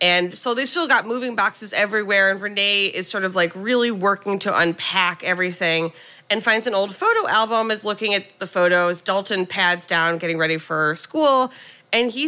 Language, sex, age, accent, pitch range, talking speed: English, female, 30-49, American, 180-230 Hz, 190 wpm